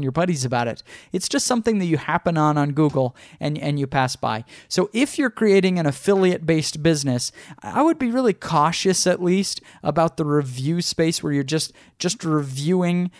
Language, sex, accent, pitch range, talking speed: English, male, American, 140-175 Hz, 190 wpm